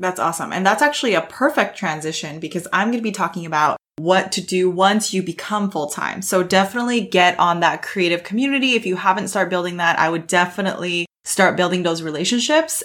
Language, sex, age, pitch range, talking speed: English, female, 20-39, 170-210 Hz, 195 wpm